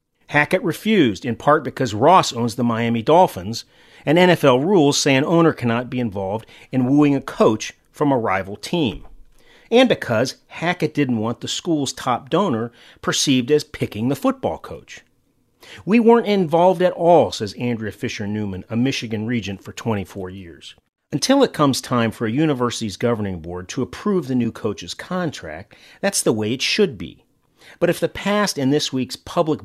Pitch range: 115-165 Hz